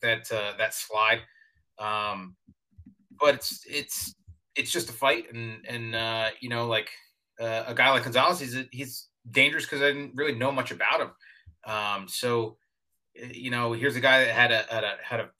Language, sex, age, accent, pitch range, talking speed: English, male, 30-49, American, 110-125 Hz, 185 wpm